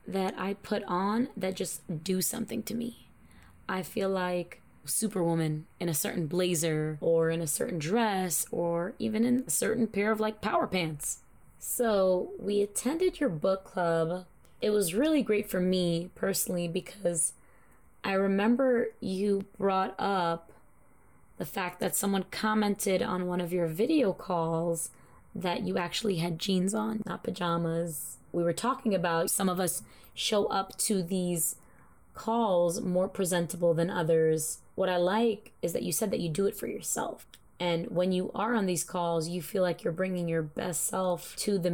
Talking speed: 170 wpm